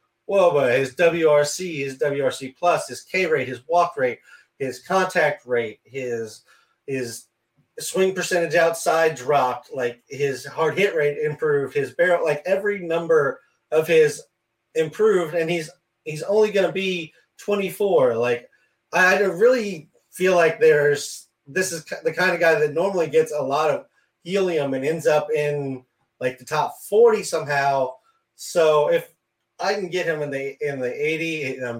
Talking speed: 160 wpm